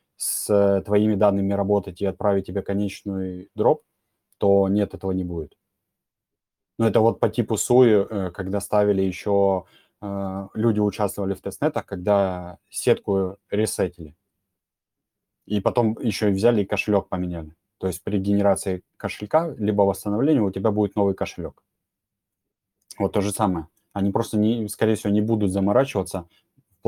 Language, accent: Russian, native